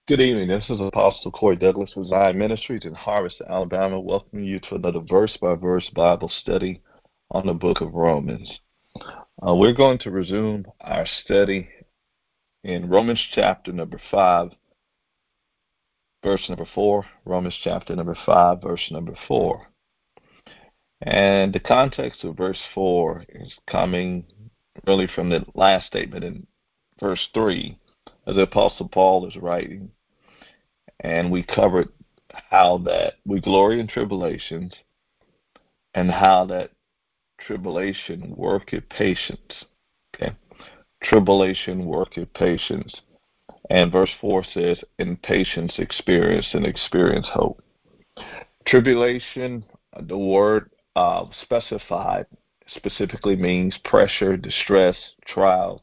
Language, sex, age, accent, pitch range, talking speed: English, male, 50-69, American, 90-100 Hz, 115 wpm